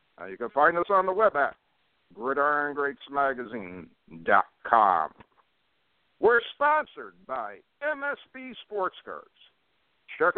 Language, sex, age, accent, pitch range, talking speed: English, male, 60-79, American, 145-205 Hz, 100 wpm